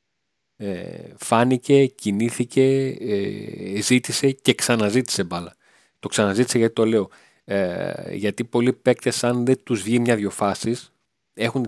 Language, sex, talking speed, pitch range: Greek, male, 120 wpm, 105-125 Hz